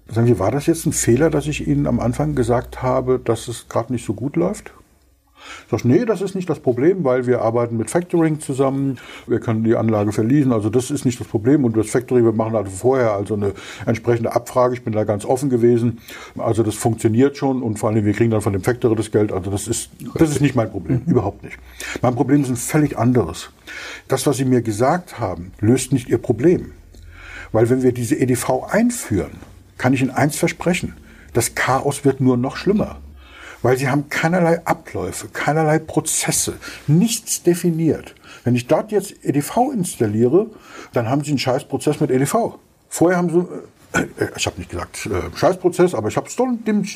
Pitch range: 115-150 Hz